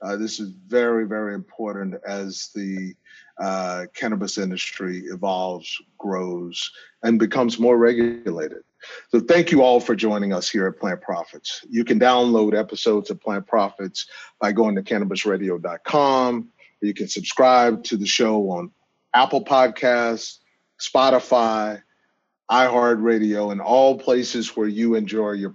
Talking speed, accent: 135 wpm, American